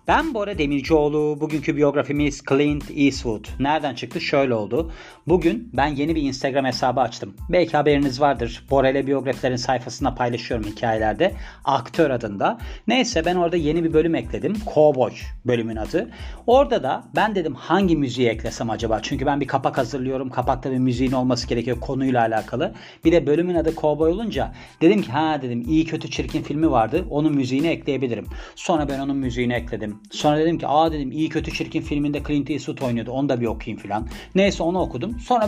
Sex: male